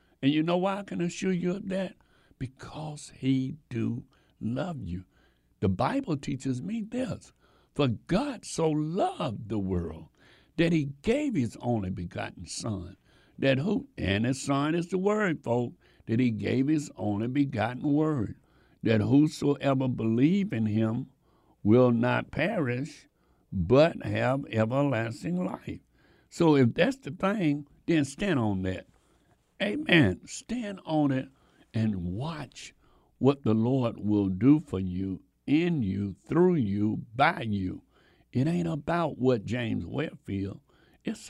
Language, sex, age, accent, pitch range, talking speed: English, male, 60-79, American, 110-155 Hz, 140 wpm